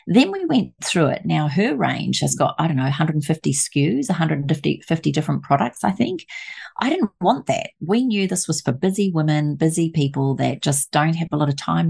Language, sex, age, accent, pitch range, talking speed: English, female, 40-59, Australian, 145-200 Hz, 210 wpm